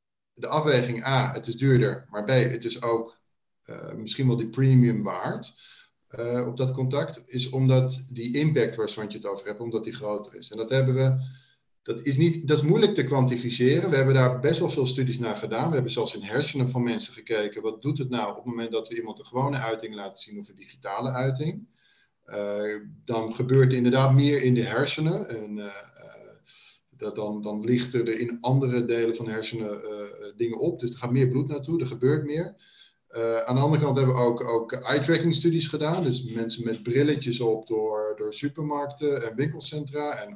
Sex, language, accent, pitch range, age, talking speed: male, Dutch, Dutch, 115-145 Hz, 40-59, 205 wpm